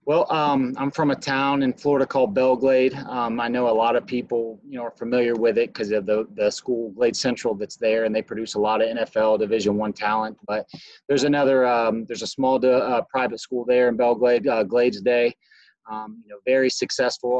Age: 30-49